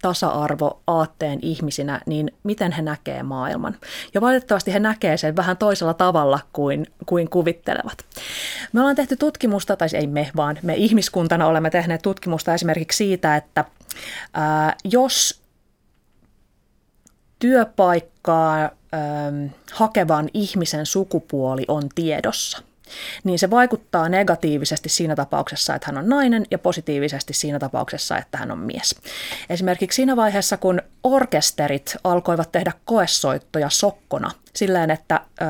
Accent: native